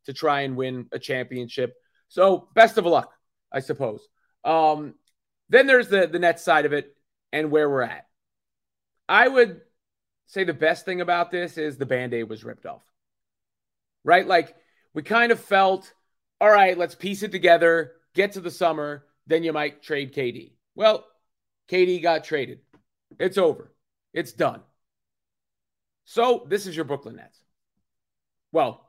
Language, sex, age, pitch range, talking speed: English, male, 30-49, 140-195 Hz, 155 wpm